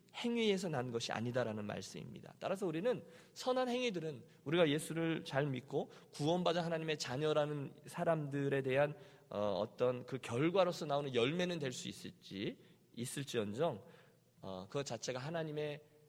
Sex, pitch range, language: male, 115-165 Hz, Korean